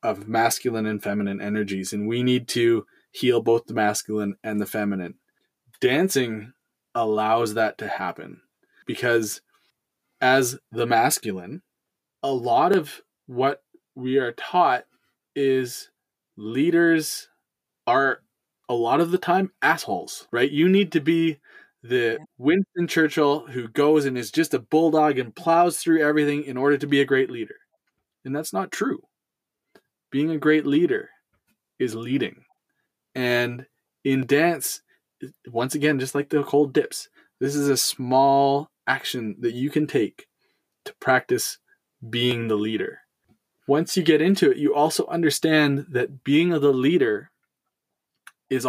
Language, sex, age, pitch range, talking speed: English, male, 20-39, 120-160 Hz, 140 wpm